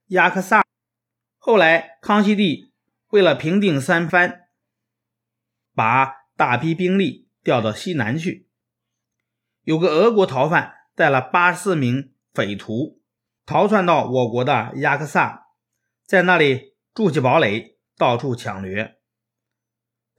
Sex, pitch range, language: male, 115-175 Hz, Chinese